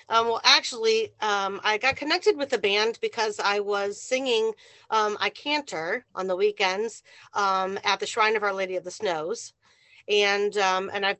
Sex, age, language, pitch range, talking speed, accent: female, 40-59, English, 195-305 Hz, 180 wpm, American